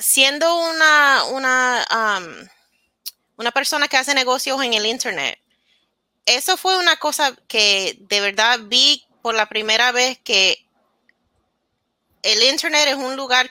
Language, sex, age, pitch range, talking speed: Spanish, female, 30-49, 205-265 Hz, 135 wpm